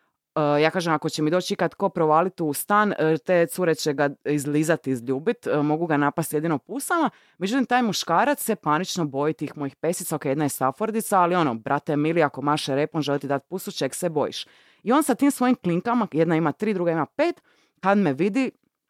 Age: 30-49